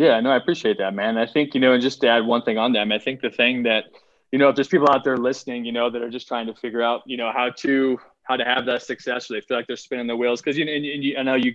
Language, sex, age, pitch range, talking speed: English, male, 20-39, 115-130 Hz, 345 wpm